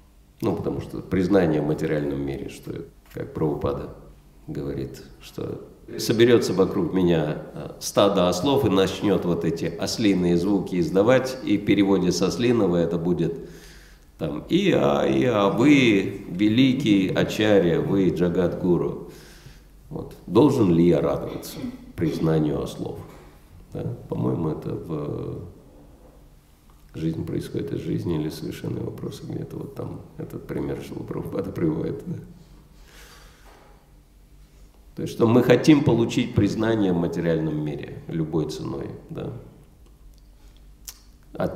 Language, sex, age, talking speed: Russian, male, 50-69, 115 wpm